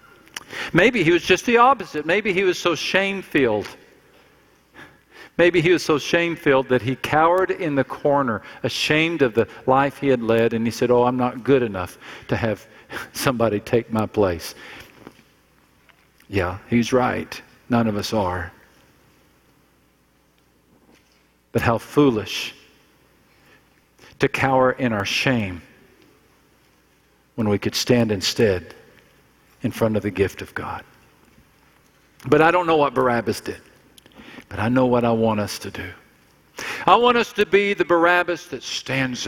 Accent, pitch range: American, 115-170 Hz